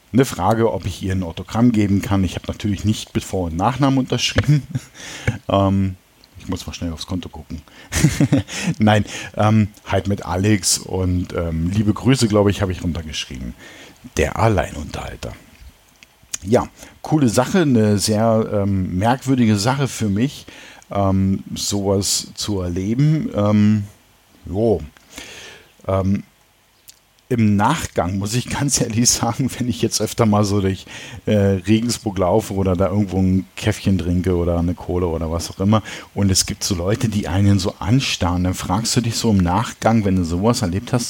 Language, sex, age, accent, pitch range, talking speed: German, male, 50-69, German, 95-115 Hz, 160 wpm